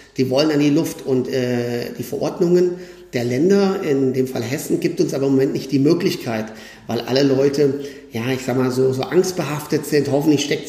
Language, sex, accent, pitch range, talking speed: German, male, German, 130-160 Hz, 200 wpm